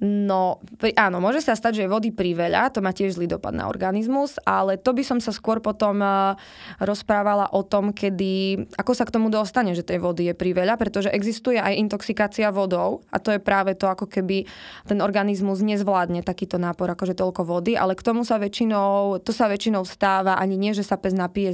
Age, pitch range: 20-39, 185-205 Hz